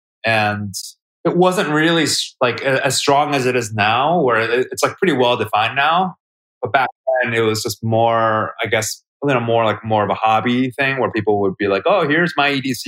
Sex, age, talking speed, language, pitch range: male, 30-49, 210 wpm, English, 100-125 Hz